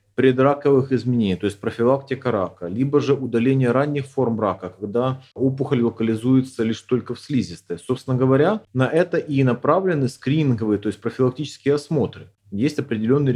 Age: 30-49